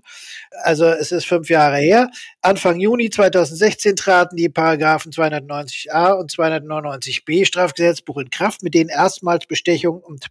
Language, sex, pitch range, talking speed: German, male, 150-180 Hz, 135 wpm